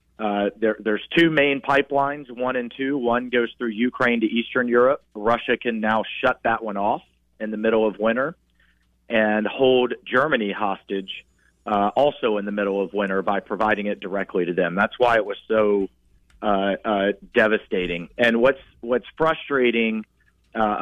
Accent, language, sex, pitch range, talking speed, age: American, English, male, 105-125 Hz, 165 wpm, 40-59